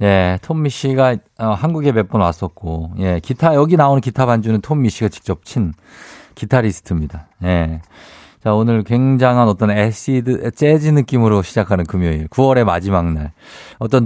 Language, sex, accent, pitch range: Korean, male, native, 95-135 Hz